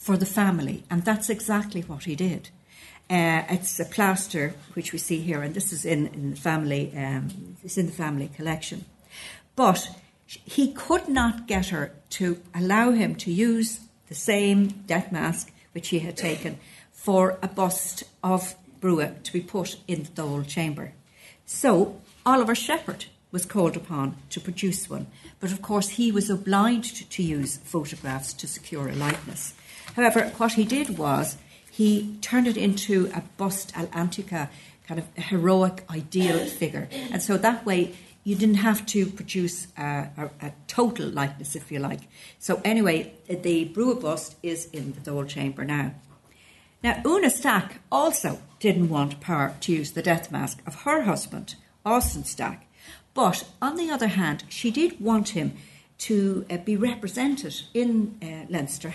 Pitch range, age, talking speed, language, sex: 160-210 Hz, 60-79, 165 wpm, English, female